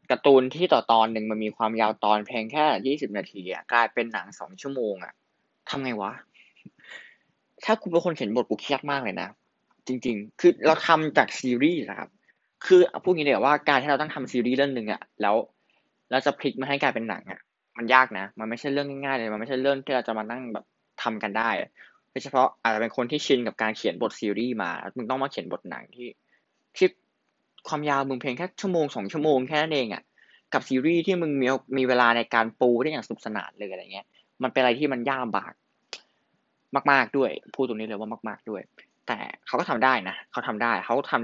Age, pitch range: 20-39, 115-150 Hz